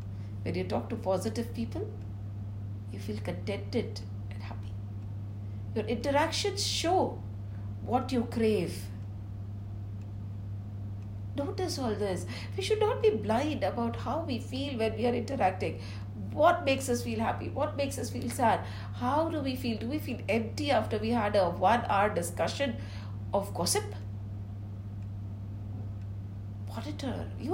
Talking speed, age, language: 135 wpm, 60-79, English